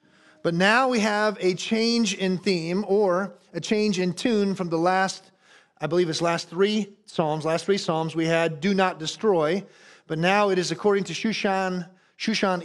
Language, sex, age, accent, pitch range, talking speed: English, male, 30-49, American, 155-200 Hz, 180 wpm